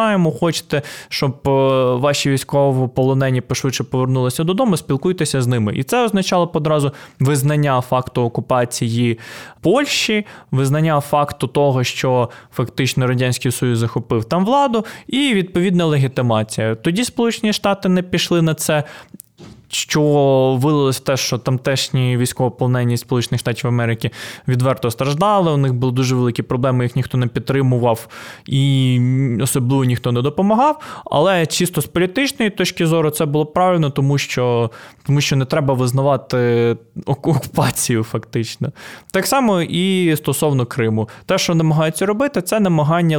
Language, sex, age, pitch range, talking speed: Ukrainian, male, 20-39, 130-175 Hz, 130 wpm